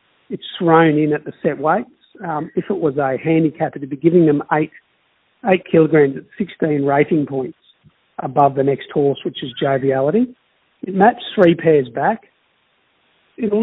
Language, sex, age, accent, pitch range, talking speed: English, male, 50-69, Australian, 140-170 Hz, 165 wpm